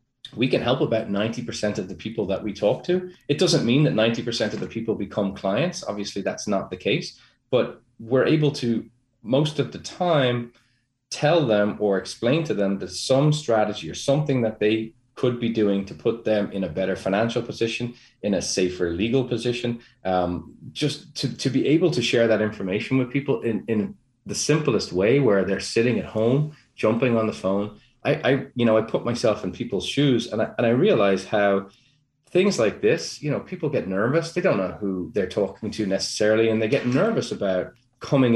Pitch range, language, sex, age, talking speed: 105-125 Hz, English, male, 20-39, 200 wpm